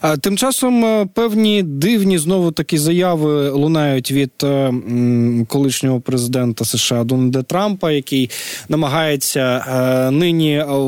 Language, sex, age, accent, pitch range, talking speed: Ukrainian, male, 20-39, native, 130-185 Hz, 95 wpm